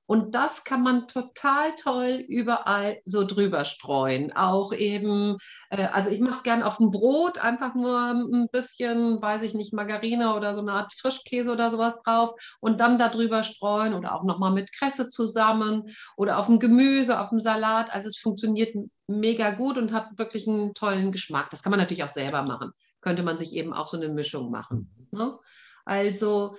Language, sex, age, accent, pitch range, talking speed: German, female, 50-69, German, 195-240 Hz, 185 wpm